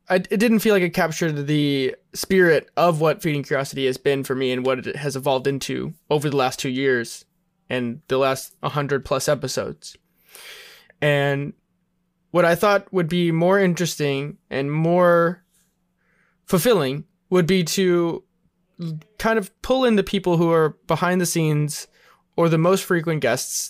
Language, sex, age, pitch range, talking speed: English, male, 20-39, 140-180 Hz, 165 wpm